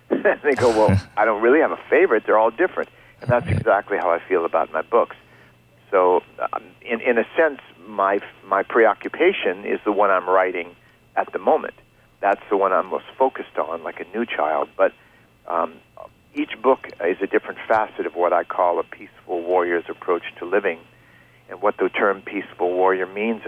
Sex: male